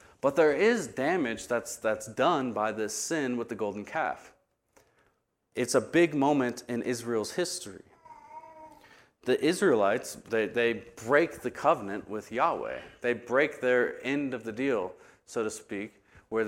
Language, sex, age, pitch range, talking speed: English, male, 30-49, 110-130 Hz, 150 wpm